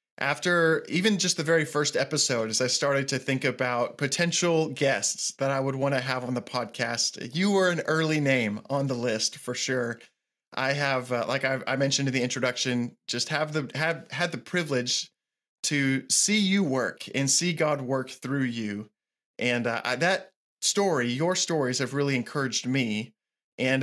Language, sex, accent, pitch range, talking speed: English, male, American, 130-160 Hz, 185 wpm